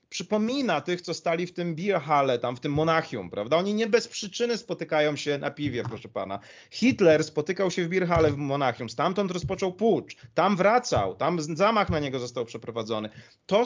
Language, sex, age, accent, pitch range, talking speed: Polish, male, 30-49, native, 140-175 Hz, 180 wpm